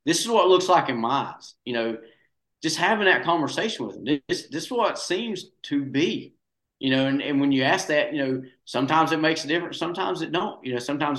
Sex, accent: male, American